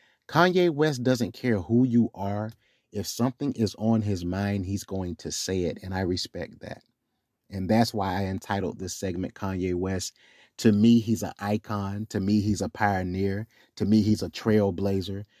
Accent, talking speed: American, 180 wpm